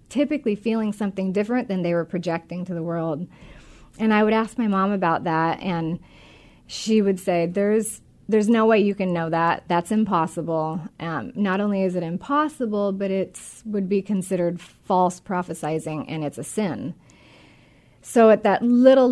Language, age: English, 30-49